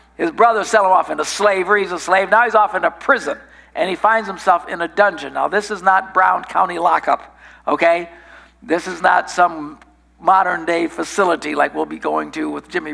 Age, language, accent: 60-79, English, American